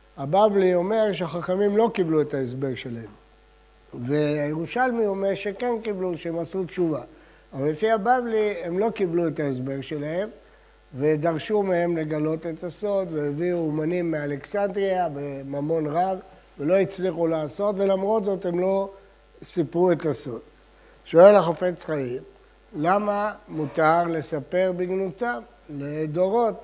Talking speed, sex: 110 wpm, male